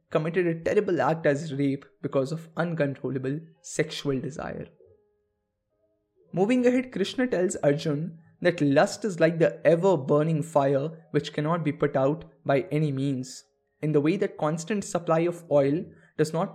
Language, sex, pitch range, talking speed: English, male, 140-180 Hz, 150 wpm